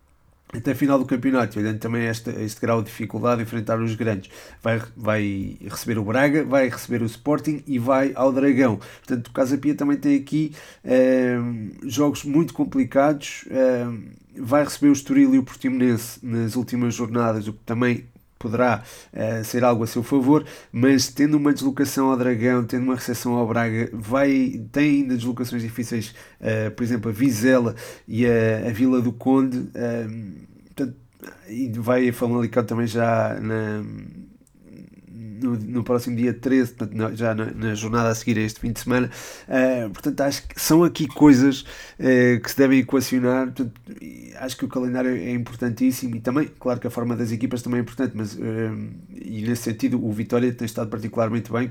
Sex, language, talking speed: male, Portuguese, 170 wpm